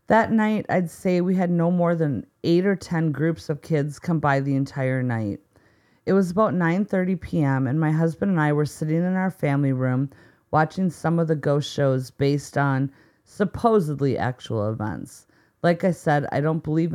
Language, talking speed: English, 190 wpm